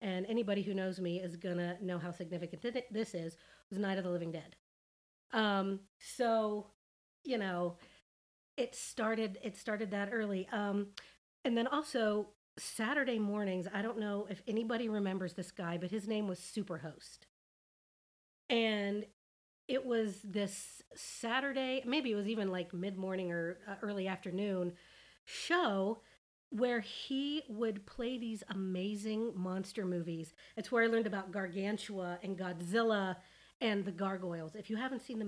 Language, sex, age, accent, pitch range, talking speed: English, female, 40-59, American, 185-225 Hz, 150 wpm